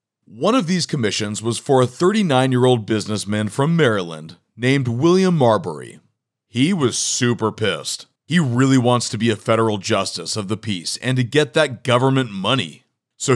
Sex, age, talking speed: male, 40-59, 160 wpm